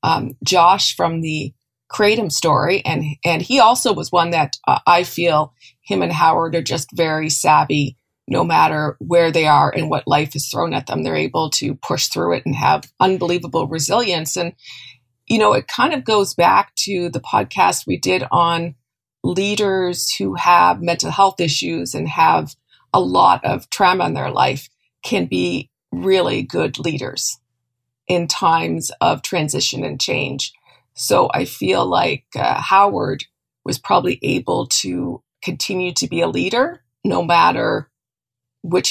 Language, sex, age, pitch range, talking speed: English, female, 40-59, 125-180 Hz, 160 wpm